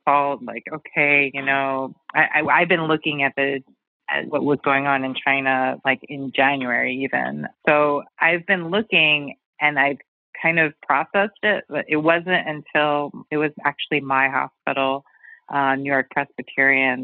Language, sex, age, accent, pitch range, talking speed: English, female, 30-49, American, 135-160 Hz, 150 wpm